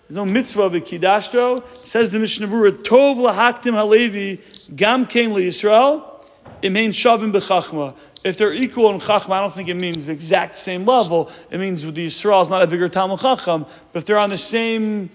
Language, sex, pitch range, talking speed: English, male, 180-225 Hz, 190 wpm